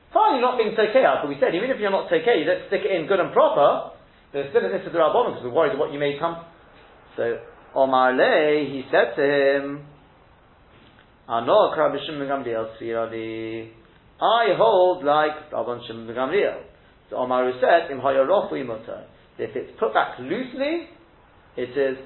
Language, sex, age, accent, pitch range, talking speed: English, male, 40-59, British, 125-180 Hz, 155 wpm